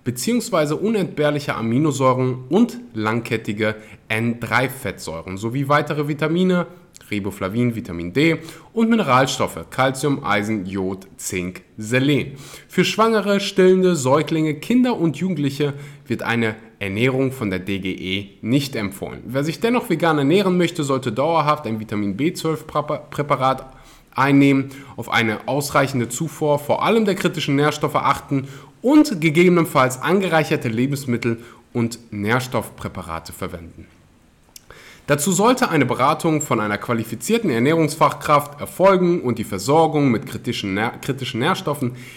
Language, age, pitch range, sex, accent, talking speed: German, 20-39, 110-160 Hz, male, German, 110 wpm